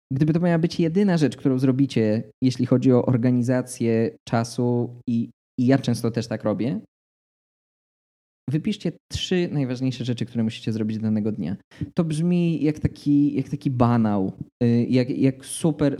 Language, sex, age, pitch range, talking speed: Polish, male, 20-39, 120-155 Hz, 150 wpm